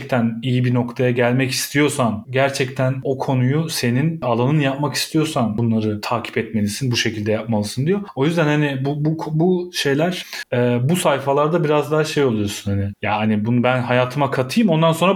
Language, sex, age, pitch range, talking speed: Turkish, male, 30-49, 115-150 Hz, 160 wpm